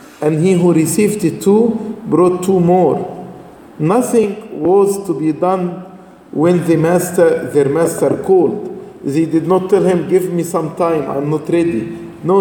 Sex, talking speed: male, 150 wpm